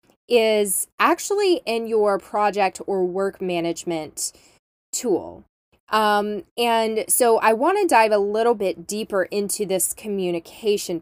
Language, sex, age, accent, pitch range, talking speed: English, female, 10-29, American, 195-280 Hz, 120 wpm